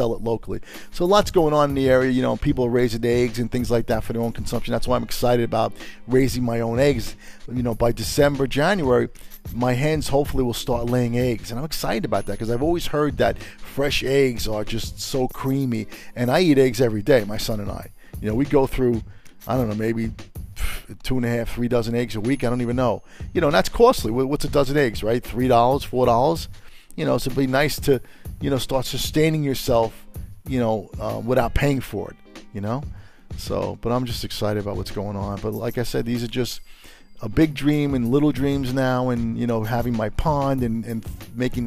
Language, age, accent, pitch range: English, 40-59, American, 110-130 Hz